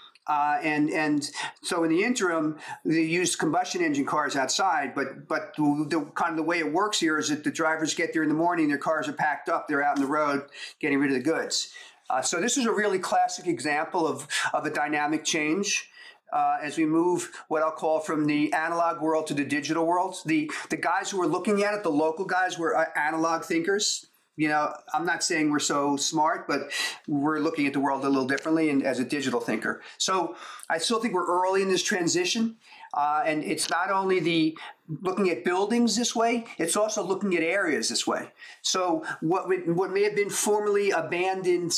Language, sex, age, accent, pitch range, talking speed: English, male, 50-69, American, 155-210 Hz, 215 wpm